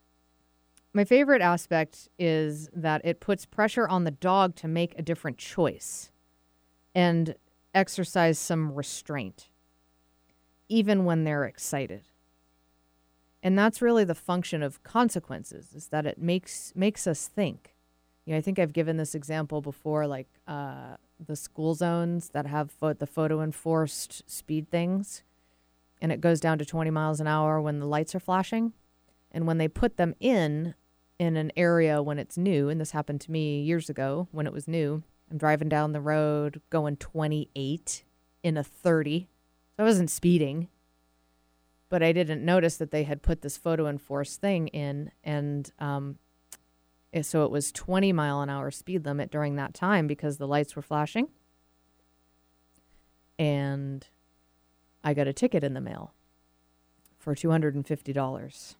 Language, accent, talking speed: English, American, 155 wpm